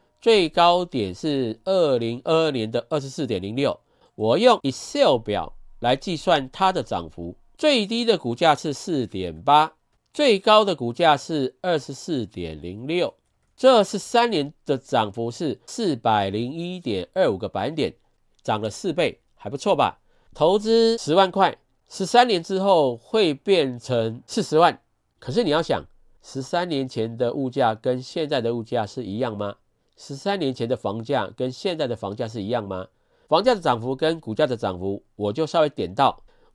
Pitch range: 115-185 Hz